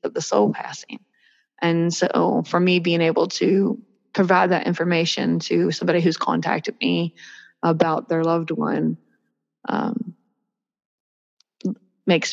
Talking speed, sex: 120 wpm, female